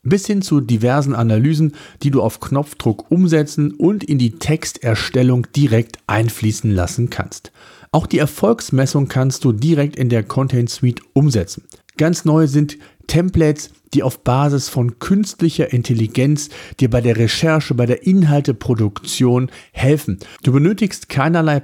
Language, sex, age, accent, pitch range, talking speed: German, male, 50-69, German, 120-160 Hz, 140 wpm